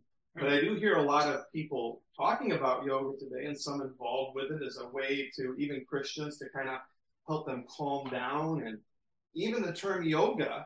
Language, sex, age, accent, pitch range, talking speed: English, male, 40-59, American, 135-165 Hz, 195 wpm